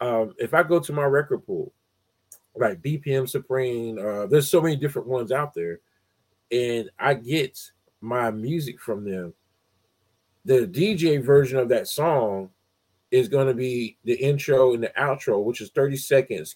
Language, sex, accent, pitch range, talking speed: English, male, American, 115-155 Hz, 165 wpm